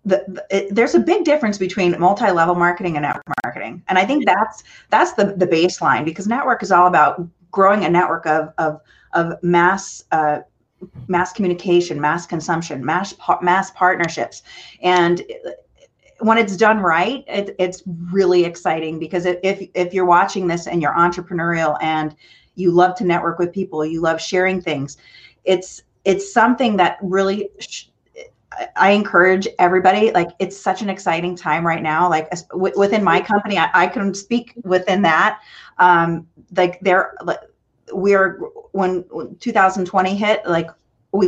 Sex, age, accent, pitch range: female, 30-49, American, 170-195 Hz